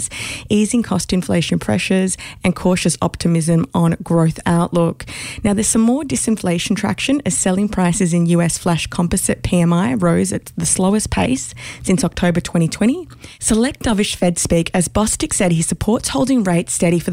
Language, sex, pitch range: English, female, 170-210 Hz